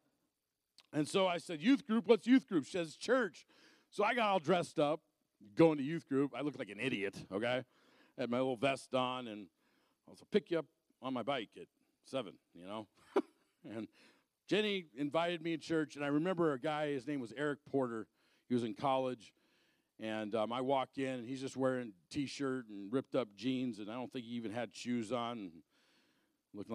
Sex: male